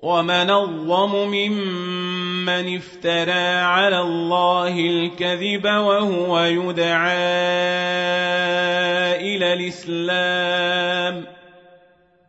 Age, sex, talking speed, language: 40-59, male, 50 wpm, Arabic